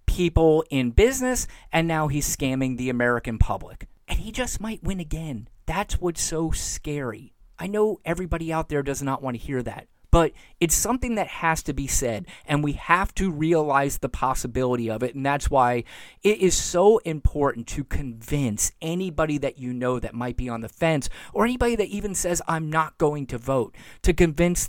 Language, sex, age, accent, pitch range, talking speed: English, male, 30-49, American, 135-185 Hz, 190 wpm